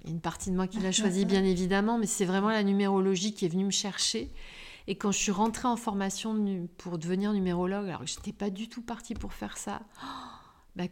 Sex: female